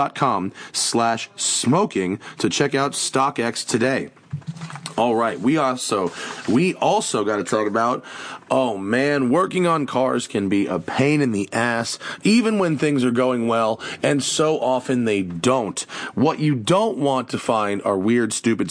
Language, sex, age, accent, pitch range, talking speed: English, male, 30-49, American, 115-155 Hz, 155 wpm